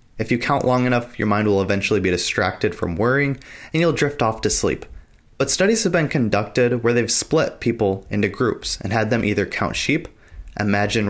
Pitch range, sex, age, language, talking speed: 105-135 Hz, male, 20-39, English, 200 wpm